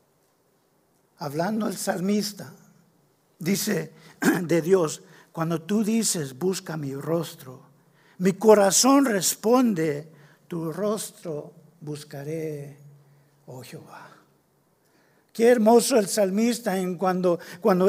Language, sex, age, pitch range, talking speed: English, male, 50-69, 160-210 Hz, 85 wpm